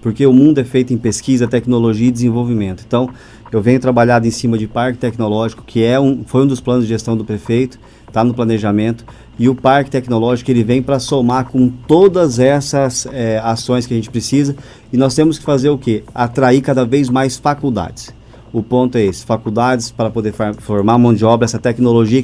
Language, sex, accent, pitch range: Portuguese, male, Brazilian, 120-135 Hz